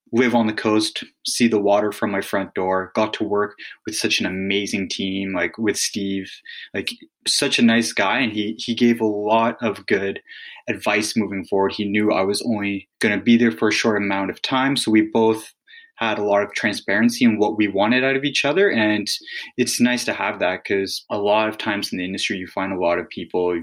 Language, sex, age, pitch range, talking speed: English, male, 20-39, 100-115 Hz, 225 wpm